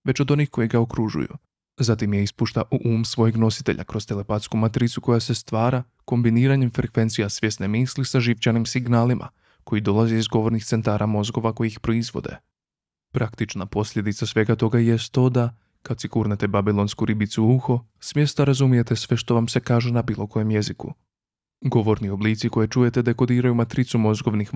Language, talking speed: Croatian, 165 wpm